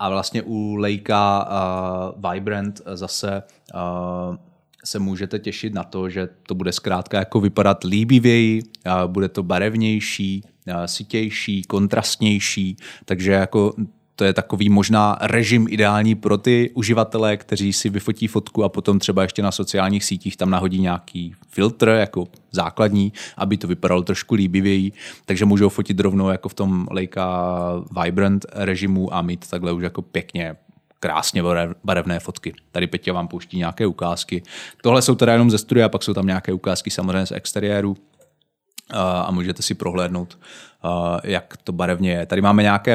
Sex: male